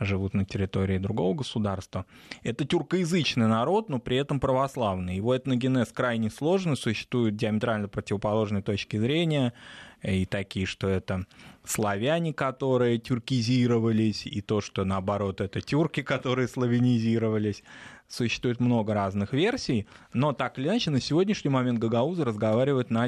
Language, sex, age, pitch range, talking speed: Russian, male, 20-39, 105-130 Hz, 130 wpm